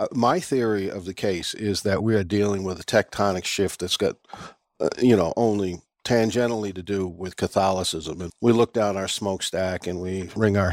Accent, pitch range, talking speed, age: American, 100-130 Hz, 195 wpm, 50-69